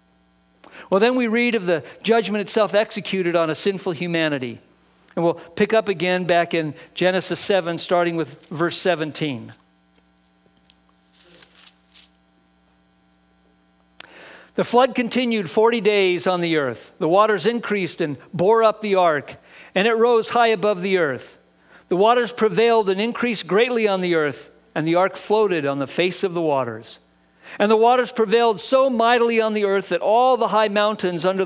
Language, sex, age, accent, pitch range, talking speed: English, male, 50-69, American, 160-220 Hz, 160 wpm